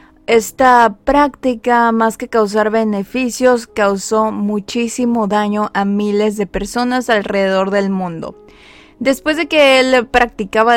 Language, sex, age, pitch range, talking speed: Spanish, female, 20-39, 215-260 Hz, 115 wpm